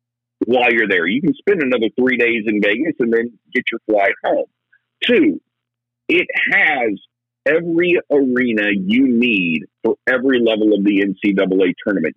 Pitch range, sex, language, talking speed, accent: 120-175 Hz, male, English, 155 wpm, American